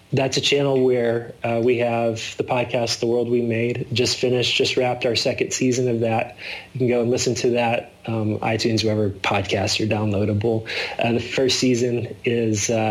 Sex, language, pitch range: male, English, 110-130 Hz